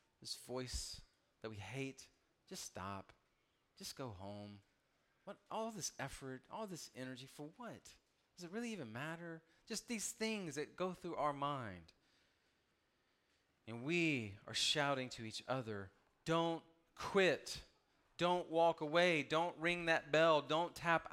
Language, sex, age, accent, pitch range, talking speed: English, male, 30-49, American, 130-195 Hz, 140 wpm